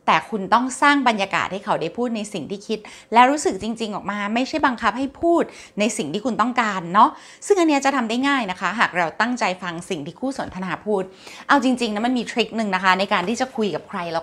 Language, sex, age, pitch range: Thai, female, 20-39, 220-315 Hz